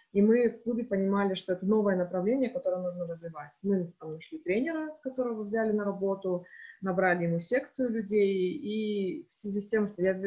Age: 20-39